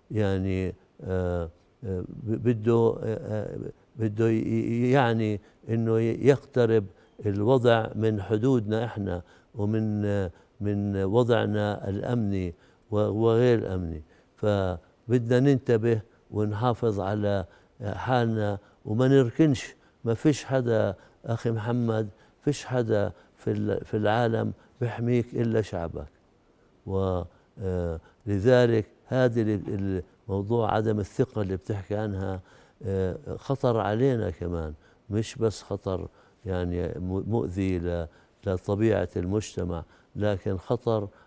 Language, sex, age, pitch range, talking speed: Arabic, male, 60-79, 95-115 Hz, 80 wpm